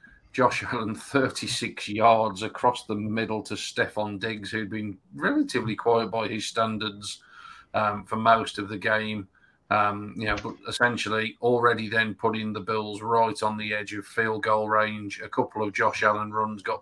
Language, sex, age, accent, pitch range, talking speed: English, male, 40-59, British, 110-120 Hz, 170 wpm